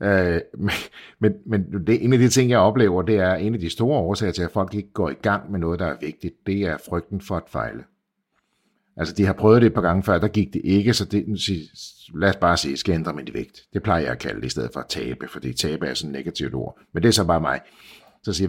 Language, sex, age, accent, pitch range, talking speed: Danish, male, 60-79, native, 90-115 Hz, 280 wpm